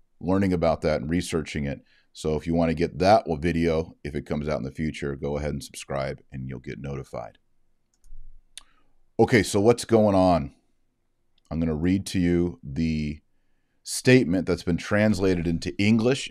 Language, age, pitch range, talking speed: English, 40-59, 80-105 Hz, 175 wpm